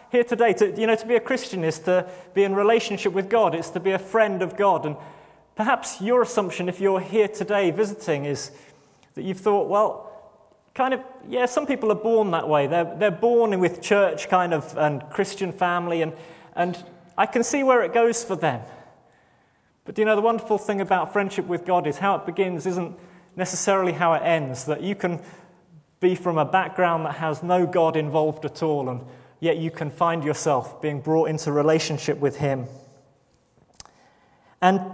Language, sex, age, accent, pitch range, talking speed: English, male, 30-49, British, 160-210 Hz, 190 wpm